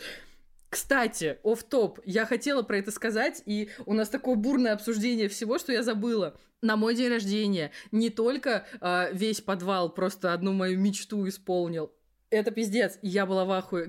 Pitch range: 195-265 Hz